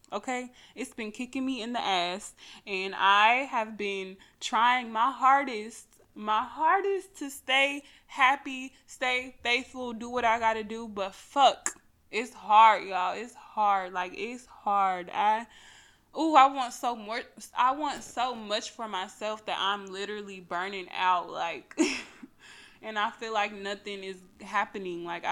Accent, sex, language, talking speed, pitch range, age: American, female, English, 150 wpm, 190-240 Hz, 20-39